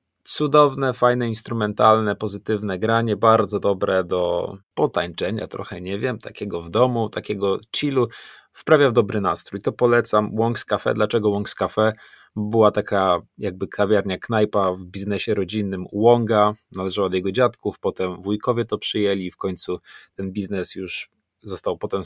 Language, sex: Polish, male